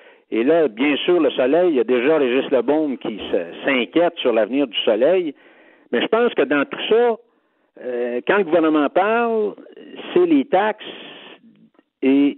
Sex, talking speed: male, 160 wpm